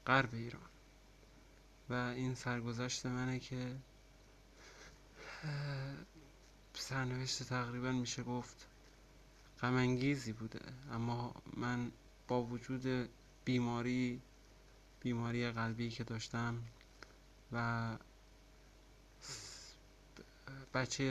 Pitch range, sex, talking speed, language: 120-130 Hz, male, 70 wpm, English